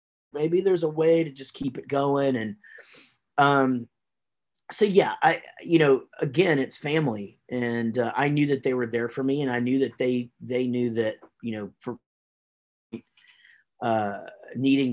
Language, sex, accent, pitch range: English, male, American, 115-140 Hz